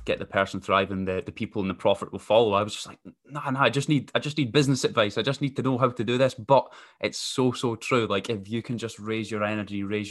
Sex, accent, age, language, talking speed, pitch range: male, British, 10-29, English, 290 wpm, 100-120 Hz